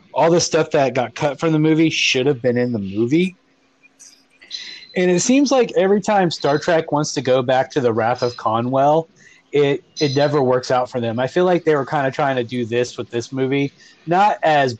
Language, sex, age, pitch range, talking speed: English, male, 30-49, 125-165 Hz, 225 wpm